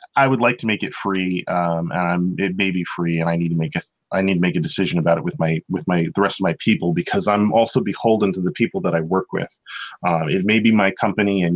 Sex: male